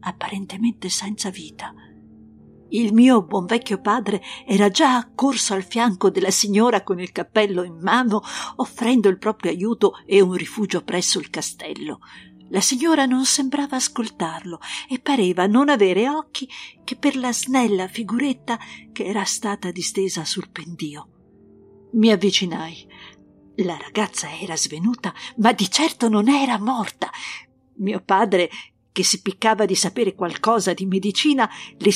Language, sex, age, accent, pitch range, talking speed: Italian, female, 50-69, native, 180-245 Hz, 140 wpm